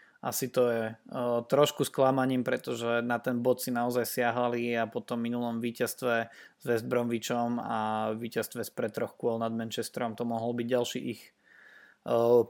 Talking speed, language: 165 wpm, Slovak